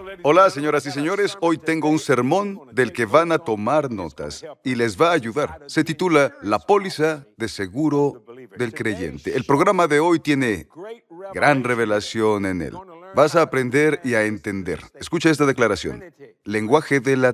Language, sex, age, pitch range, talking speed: Spanish, male, 40-59, 115-165 Hz, 165 wpm